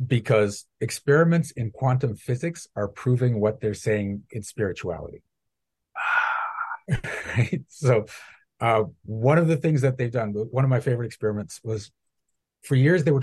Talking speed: 145 wpm